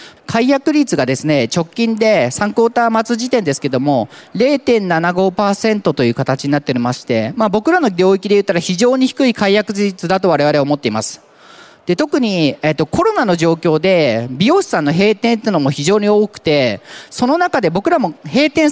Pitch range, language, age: 170-245 Hz, Japanese, 40-59